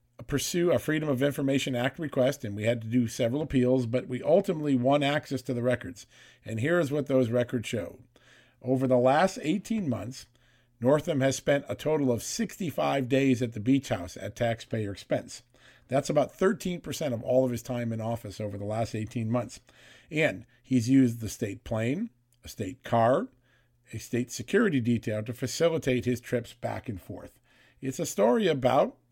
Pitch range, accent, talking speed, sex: 115-135 Hz, American, 180 wpm, male